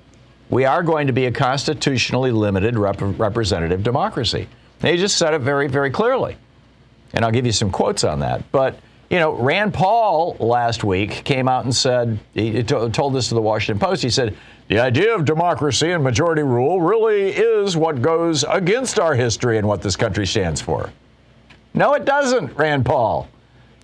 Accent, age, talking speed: American, 50-69, 180 wpm